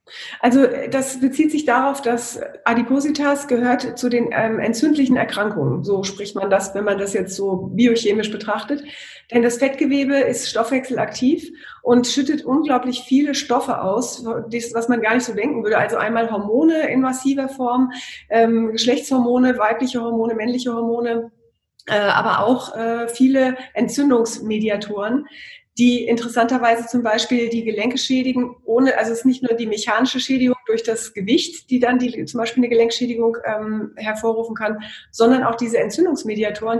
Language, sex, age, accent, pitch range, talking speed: German, female, 30-49, German, 220-255 Hz, 150 wpm